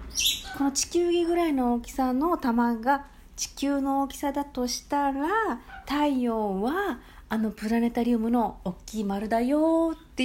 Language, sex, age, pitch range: Japanese, female, 40-59, 195-265 Hz